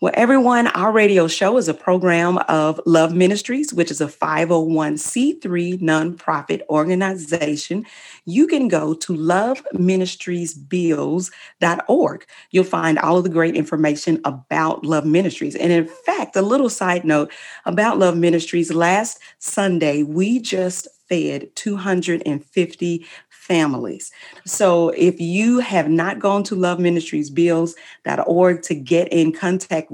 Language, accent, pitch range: English, American, 160-200 Hz